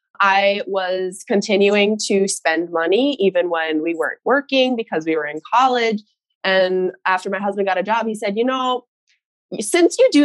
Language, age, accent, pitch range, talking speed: English, 20-39, American, 175-245 Hz, 175 wpm